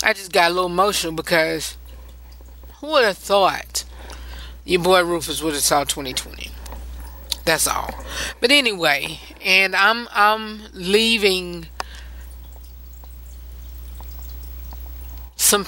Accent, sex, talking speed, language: American, female, 105 wpm, English